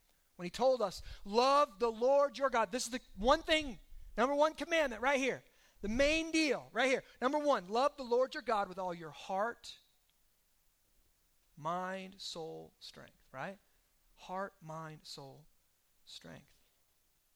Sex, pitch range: male, 170-260 Hz